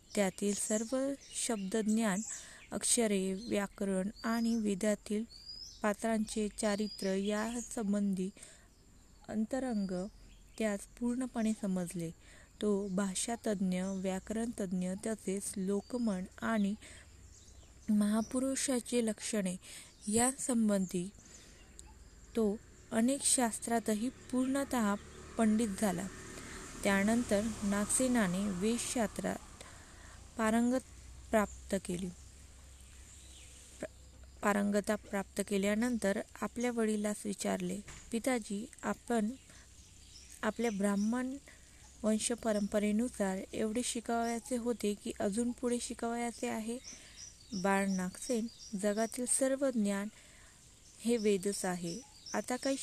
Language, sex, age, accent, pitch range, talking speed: Marathi, female, 20-39, native, 195-235 Hz, 75 wpm